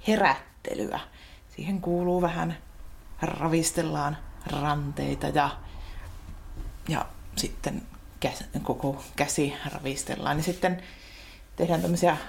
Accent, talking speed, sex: native, 85 wpm, female